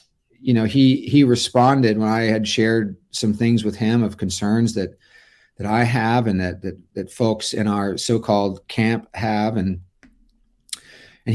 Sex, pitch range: male, 105-120 Hz